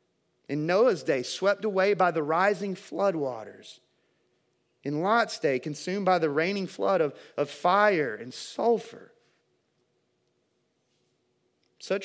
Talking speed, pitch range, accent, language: 120 wpm, 145-190 Hz, American, English